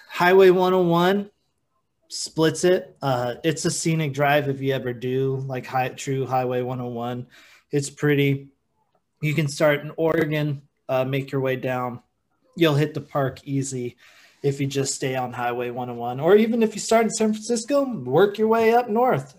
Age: 20-39